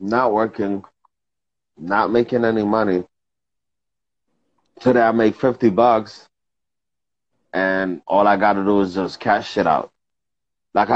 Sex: male